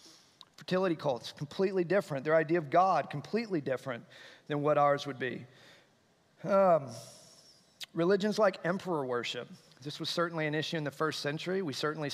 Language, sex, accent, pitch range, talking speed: English, male, American, 140-175 Hz, 155 wpm